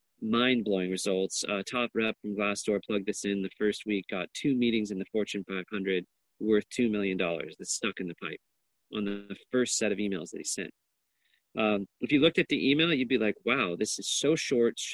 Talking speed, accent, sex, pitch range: 215 wpm, American, male, 100-130 Hz